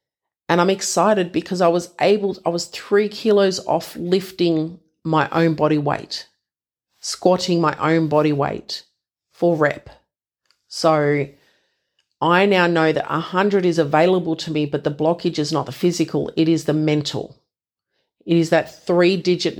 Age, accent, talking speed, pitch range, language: 40-59, Australian, 150 wpm, 150-170 Hz, English